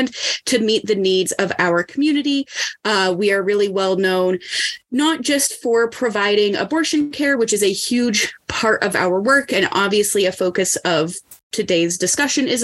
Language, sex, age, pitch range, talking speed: English, female, 20-39, 200-265 Hz, 165 wpm